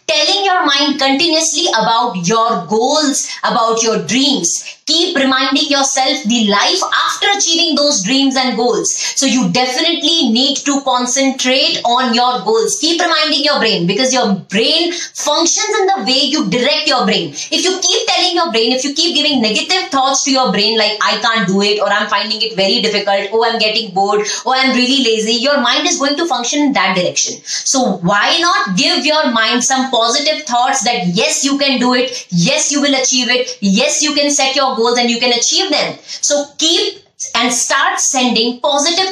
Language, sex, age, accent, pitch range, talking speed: Telugu, female, 20-39, native, 230-310 Hz, 195 wpm